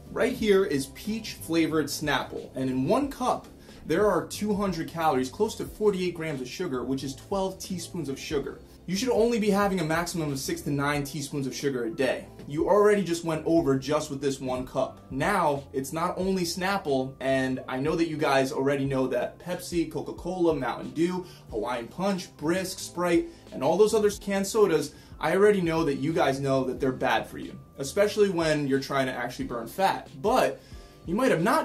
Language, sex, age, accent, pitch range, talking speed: English, male, 20-39, American, 140-195 Hz, 200 wpm